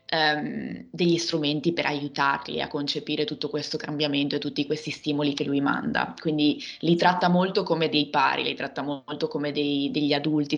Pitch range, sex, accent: 145-160 Hz, female, native